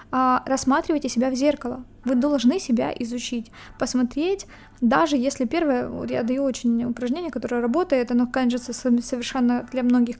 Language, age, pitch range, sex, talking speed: Ukrainian, 20-39, 250-275 Hz, female, 155 wpm